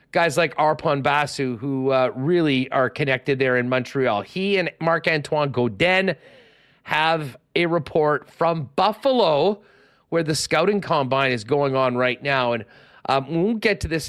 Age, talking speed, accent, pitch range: 40-59, 160 wpm, American, 130-165 Hz